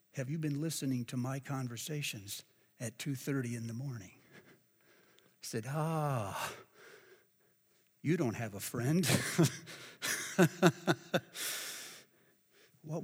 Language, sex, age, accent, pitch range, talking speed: English, male, 60-79, American, 120-150 Hz, 100 wpm